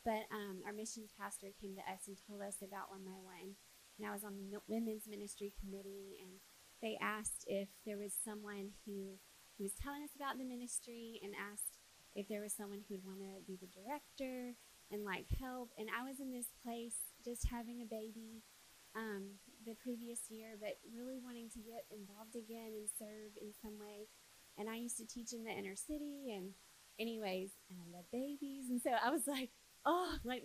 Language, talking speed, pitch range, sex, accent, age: English, 200 wpm, 205-250 Hz, female, American, 20-39